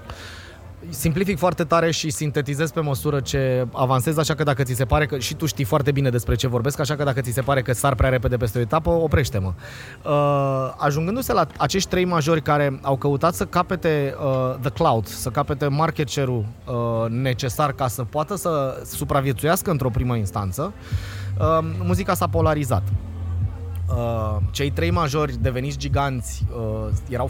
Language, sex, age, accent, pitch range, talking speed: Romanian, male, 20-39, native, 100-150 Hz, 160 wpm